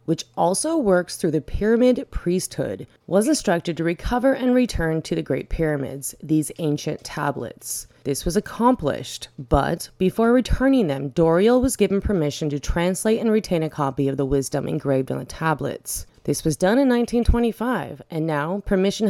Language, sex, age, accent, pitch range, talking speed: English, female, 30-49, American, 150-210 Hz, 165 wpm